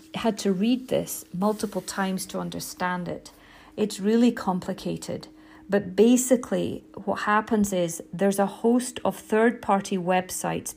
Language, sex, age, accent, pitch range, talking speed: English, female, 40-59, British, 180-225 Hz, 130 wpm